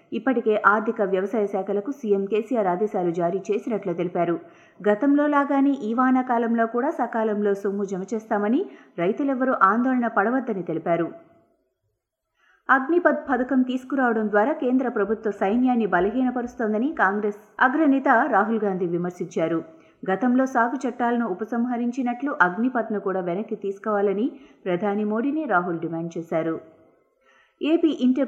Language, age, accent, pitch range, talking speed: Telugu, 30-49, native, 185-245 Hz, 110 wpm